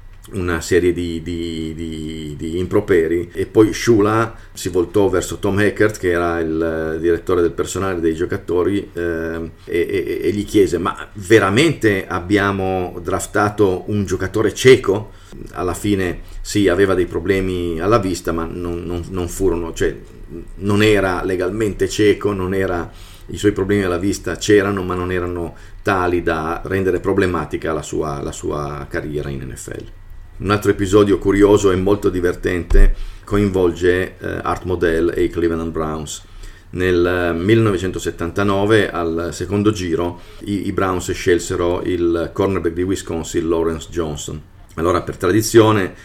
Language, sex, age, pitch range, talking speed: Italian, male, 40-59, 85-100 Hz, 135 wpm